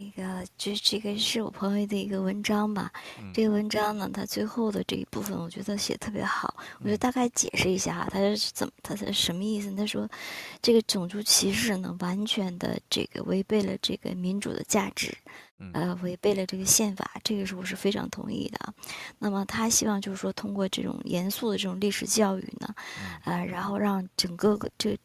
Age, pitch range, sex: 20-39, 190-215 Hz, male